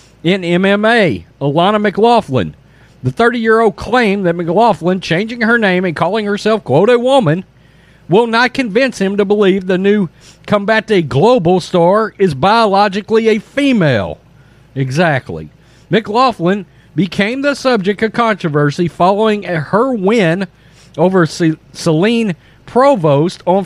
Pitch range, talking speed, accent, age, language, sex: 155-220 Hz, 120 wpm, American, 50-69, English, male